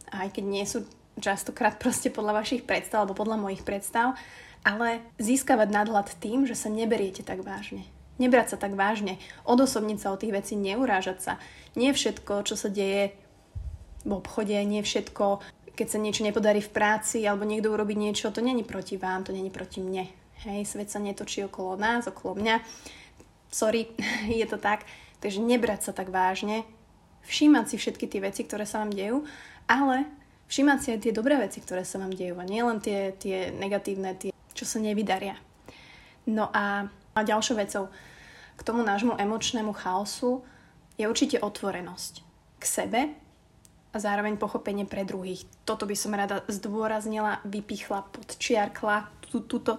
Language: Slovak